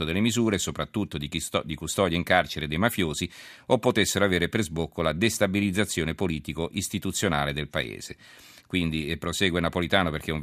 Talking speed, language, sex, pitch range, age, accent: 150 wpm, Italian, male, 80-100 Hz, 40-59, native